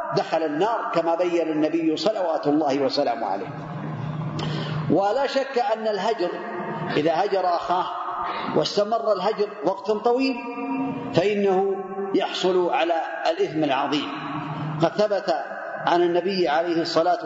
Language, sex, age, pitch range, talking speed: Arabic, male, 40-59, 165-245 Hz, 110 wpm